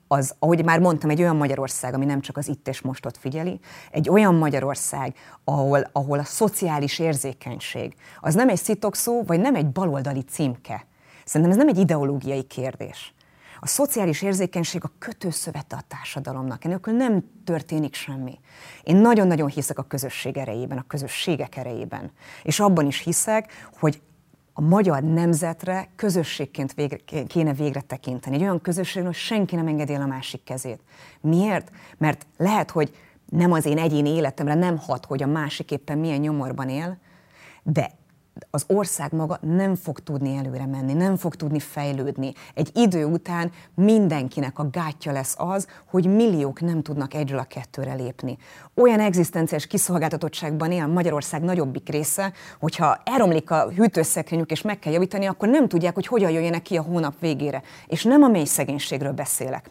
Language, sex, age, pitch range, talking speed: Hungarian, female, 30-49, 140-180 Hz, 160 wpm